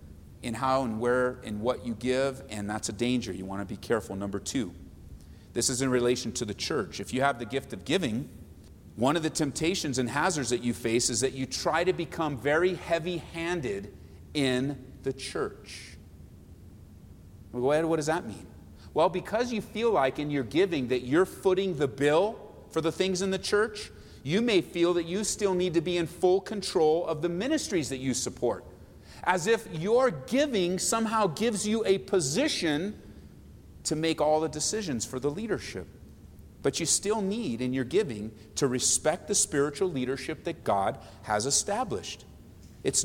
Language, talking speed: English, 180 wpm